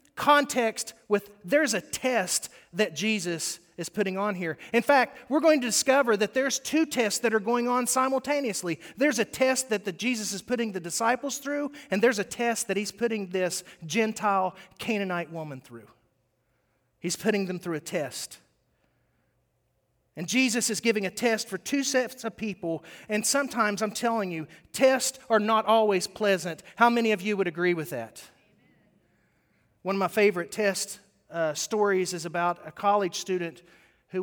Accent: American